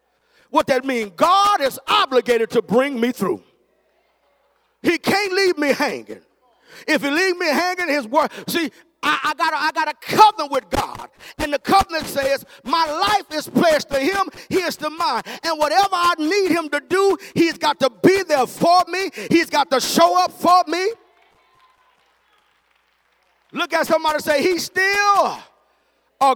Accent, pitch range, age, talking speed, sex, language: American, 220-340 Hz, 40-59, 175 wpm, male, English